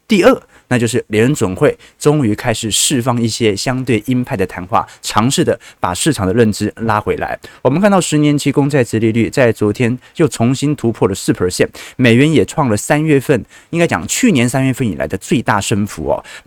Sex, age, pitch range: male, 20-39, 110-150 Hz